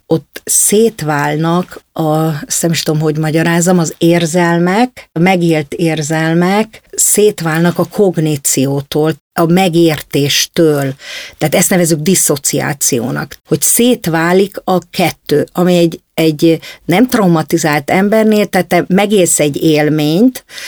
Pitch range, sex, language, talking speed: 155-195 Hz, female, Hungarian, 105 wpm